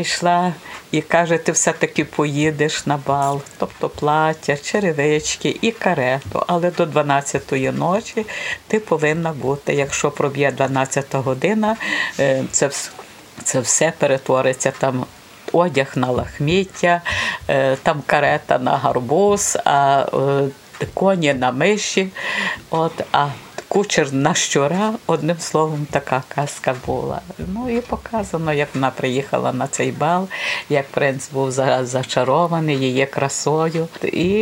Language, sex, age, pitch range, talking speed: Ukrainian, female, 50-69, 140-180 Hz, 110 wpm